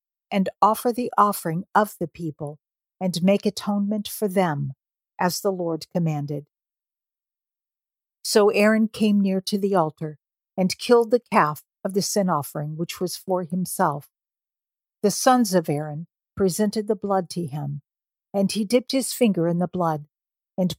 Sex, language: female, English